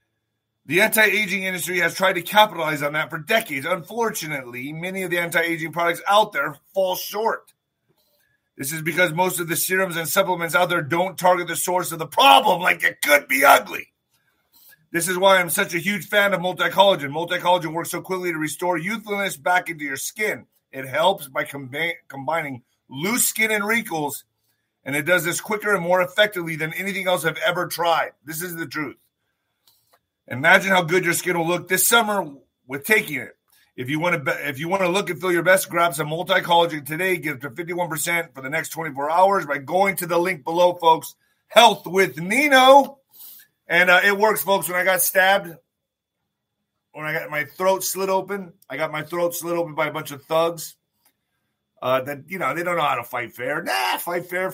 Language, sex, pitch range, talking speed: English, male, 155-190 Hz, 200 wpm